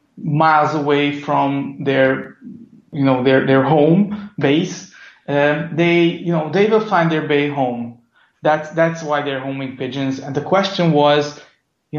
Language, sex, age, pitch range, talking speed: English, male, 30-49, 135-165 Hz, 155 wpm